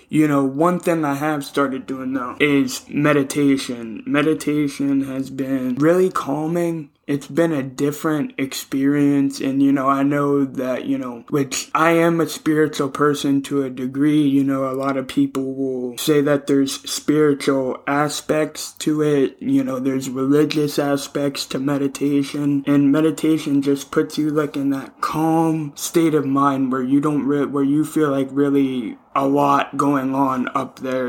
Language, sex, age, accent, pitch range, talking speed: English, male, 20-39, American, 135-150 Hz, 165 wpm